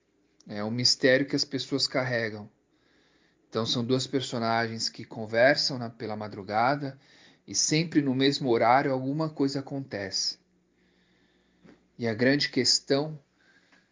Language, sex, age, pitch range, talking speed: Portuguese, male, 40-59, 115-145 Hz, 120 wpm